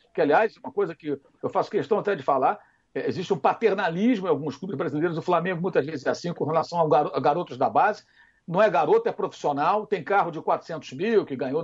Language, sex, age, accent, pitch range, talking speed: Portuguese, male, 60-79, Brazilian, 180-290 Hz, 230 wpm